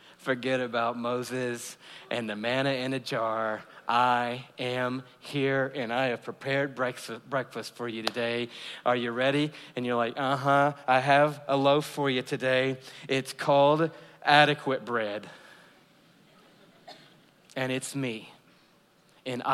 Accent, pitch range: American, 125-145 Hz